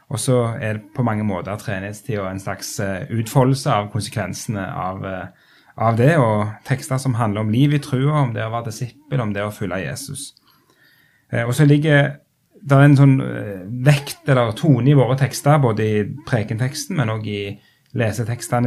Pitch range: 105-140 Hz